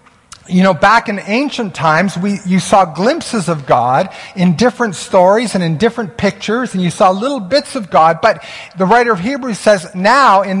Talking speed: 190 wpm